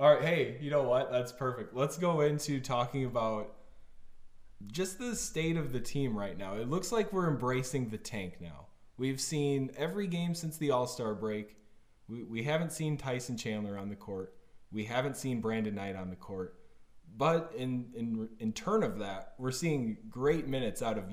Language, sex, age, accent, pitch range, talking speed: English, male, 20-39, American, 105-140 Hz, 190 wpm